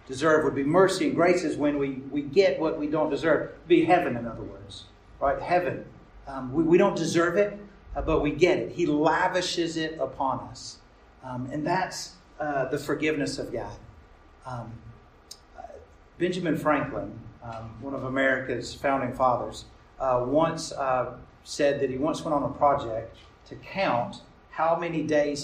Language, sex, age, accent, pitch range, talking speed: English, male, 50-69, American, 125-165 Hz, 170 wpm